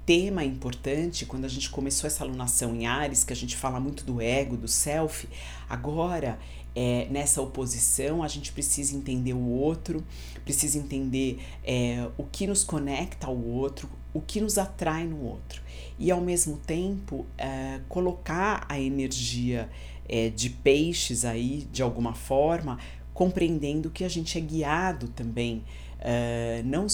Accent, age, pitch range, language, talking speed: Brazilian, 50-69, 120-160 Hz, Portuguese, 145 wpm